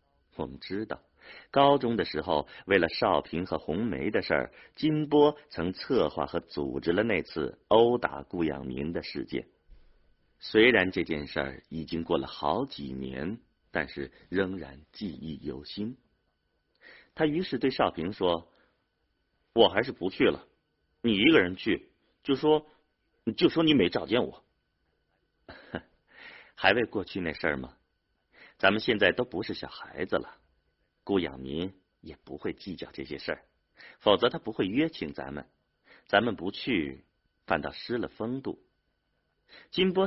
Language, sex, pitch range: Chinese, male, 70-105 Hz